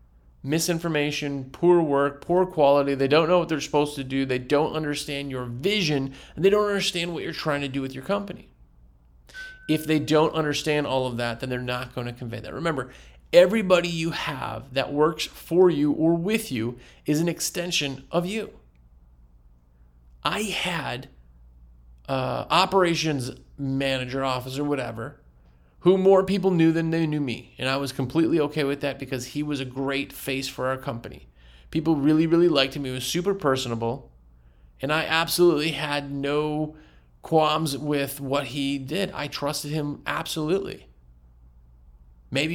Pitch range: 120-160 Hz